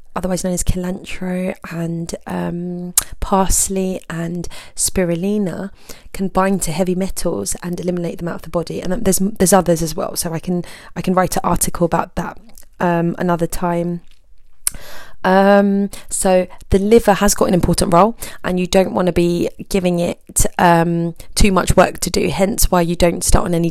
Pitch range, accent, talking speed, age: 170-195 Hz, British, 175 wpm, 20-39